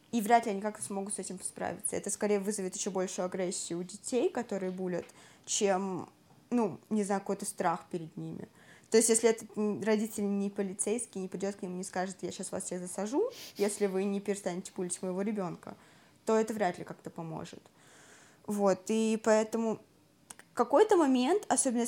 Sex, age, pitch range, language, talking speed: female, 20-39, 195-225 Hz, Russian, 175 wpm